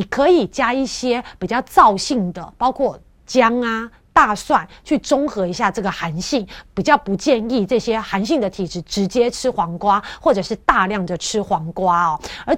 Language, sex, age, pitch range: Chinese, female, 30-49, 190-250 Hz